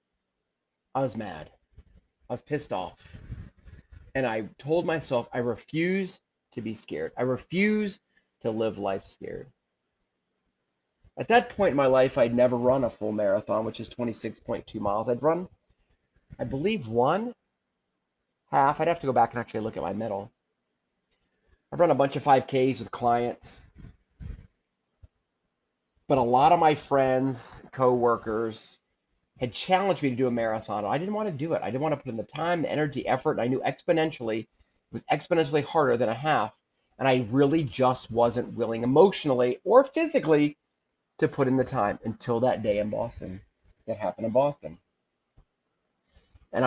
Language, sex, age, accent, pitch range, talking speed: English, male, 30-49, American, 115-160 Hz, 170 wpm